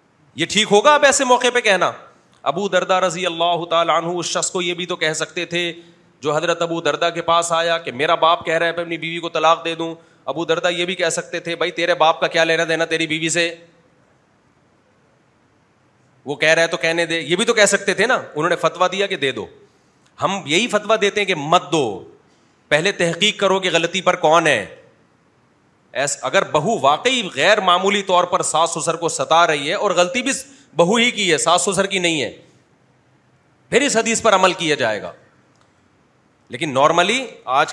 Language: Urdu